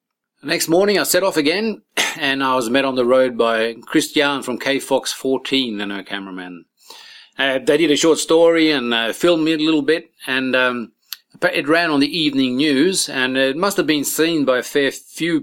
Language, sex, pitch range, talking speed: English, male, 115-150 Hz, 200 wpm